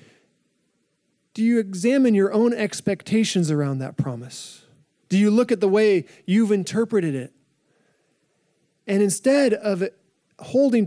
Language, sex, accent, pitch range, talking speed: English, male, American, 170-220 Hz, 120 wpm